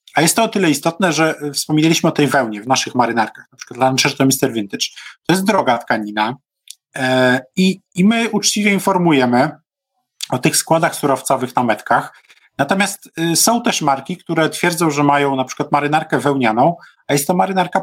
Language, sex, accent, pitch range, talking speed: Polish, male, native, 135-170 Hz, 170 wpm